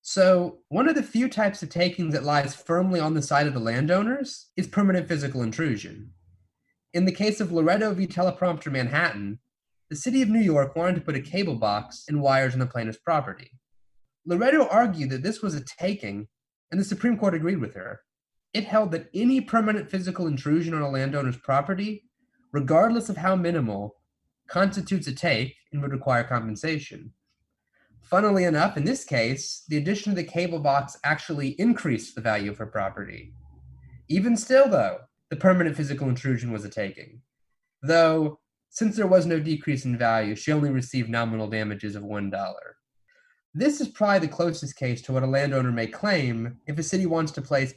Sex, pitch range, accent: male, 130-190 Hz, American